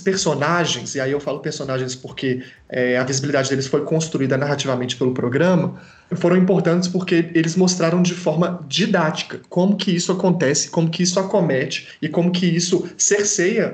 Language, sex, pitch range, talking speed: Portuguese, male, 135-170 Hz, 155 wpm